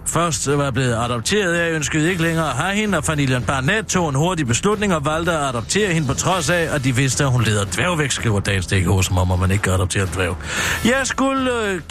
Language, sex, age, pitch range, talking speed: Danish, male, 60-79, 125-195 Hz, 230 wpm